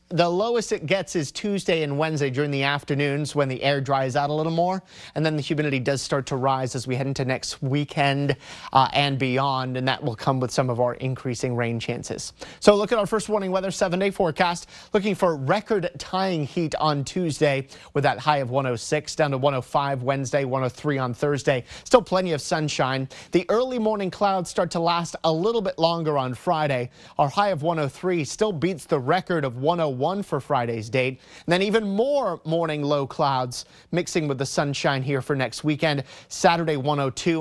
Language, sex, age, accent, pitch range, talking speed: English, male, 30-49, American, 140-180 Hz, 195 wpm